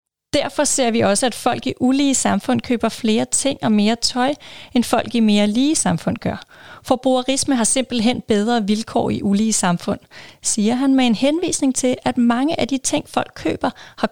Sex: female